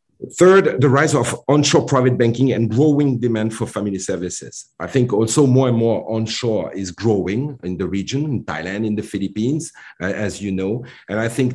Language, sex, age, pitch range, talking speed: English, male, 50-69, 90-115 Hz, 185 wpm